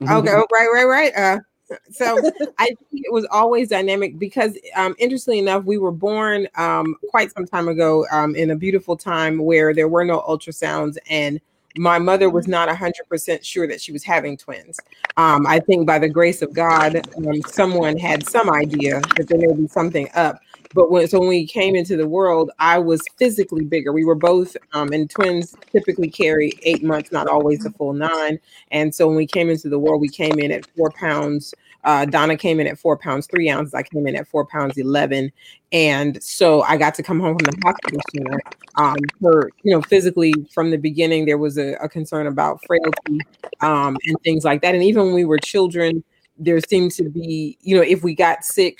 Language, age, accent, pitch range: English, 30-49, American, 155-185 Hz